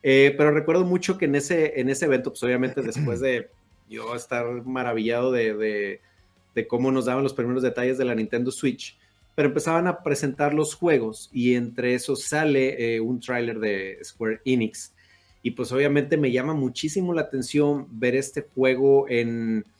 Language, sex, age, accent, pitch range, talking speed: Spanish, male, 30-49, Mexican, 120-145 Hz, 175 wpm